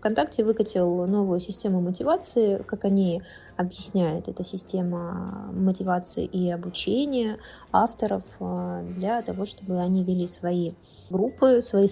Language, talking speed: Russian, 110 wpm